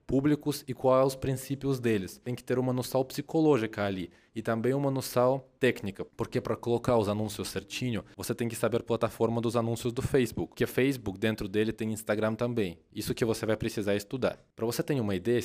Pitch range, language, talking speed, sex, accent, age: 105-125 Hz, Portuguese, 205 wpm, male, Brazilian, 20-39